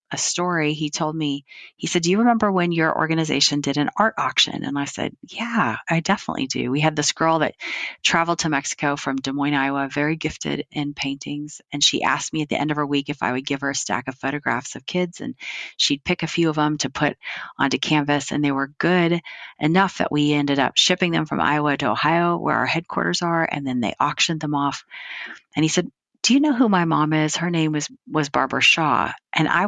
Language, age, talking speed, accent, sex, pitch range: English, 40-59, 235 wpm, American, female, 140-170 Hz